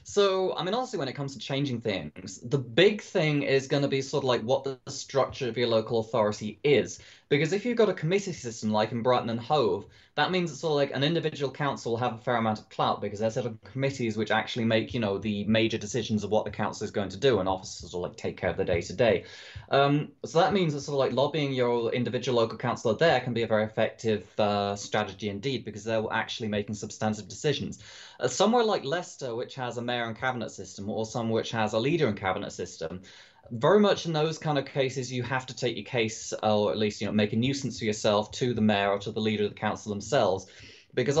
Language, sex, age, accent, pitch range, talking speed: English, male, 20-39, British, 110-135 Hz, 250 wpm